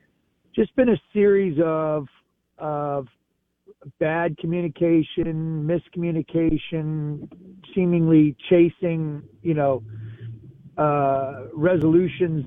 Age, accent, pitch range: 50-69, American, 145-175 Hz